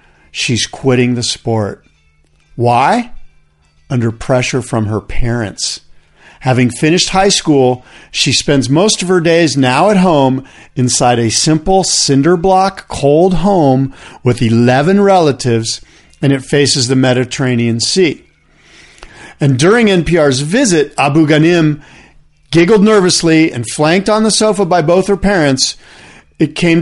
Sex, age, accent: male, 50-69, American